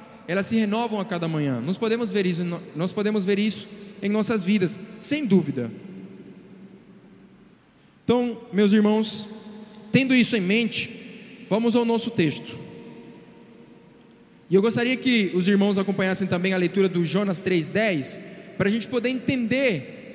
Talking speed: 135 wpm